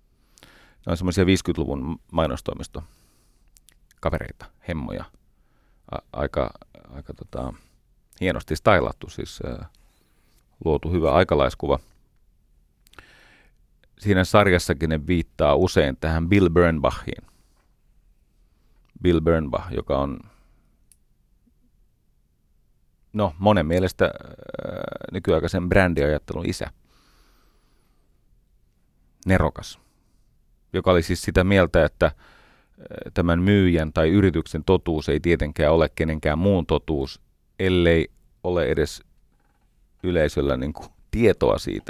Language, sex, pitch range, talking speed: Finnish, male, 80-95 Hz, 85 wpm